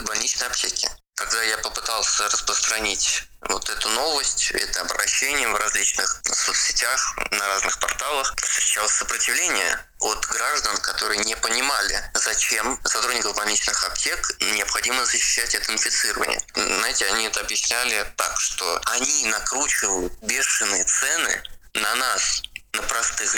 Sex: male